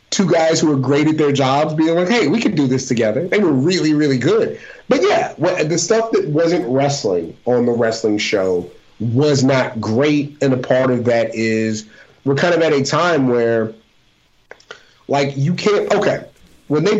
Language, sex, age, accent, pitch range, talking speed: English, male, 30-49, American, 120-155 Hz, 190 wpm